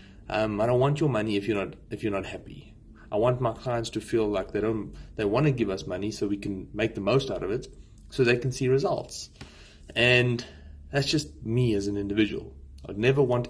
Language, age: English, 30-49